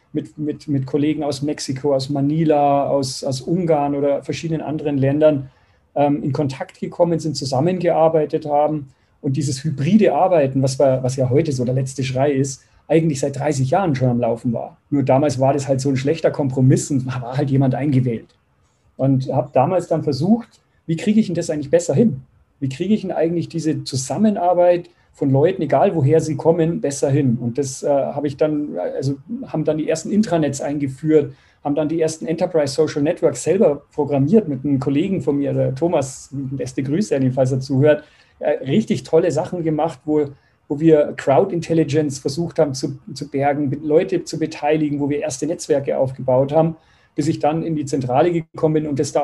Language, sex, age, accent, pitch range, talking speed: German, male, 40-59, German, 135-160 Hz, 195 wpm